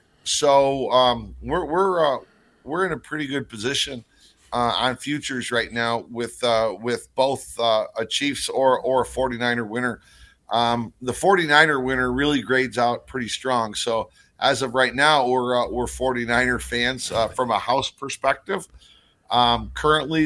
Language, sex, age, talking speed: English, male, 50-69, 160 wpm